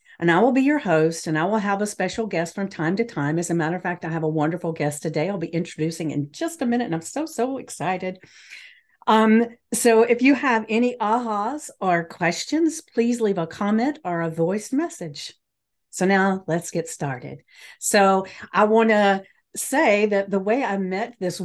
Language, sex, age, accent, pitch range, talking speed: English, female, 50-69, American, 165-220 Hz, 200 wpm